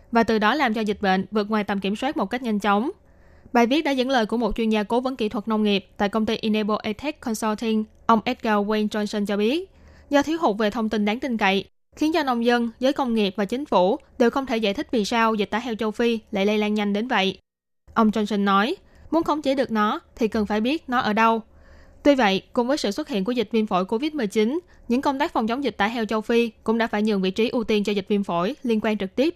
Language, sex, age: Vietnamese, female, 10-29